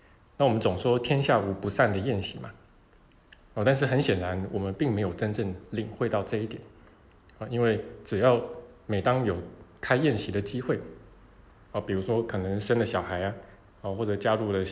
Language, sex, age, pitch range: Chinese, male, 20-39, 100-115 Hz